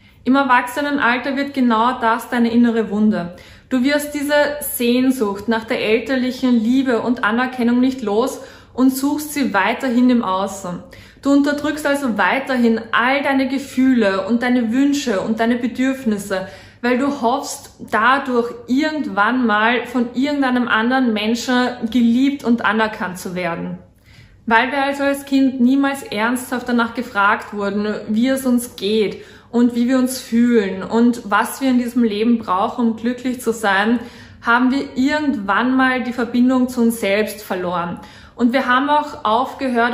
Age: 20-39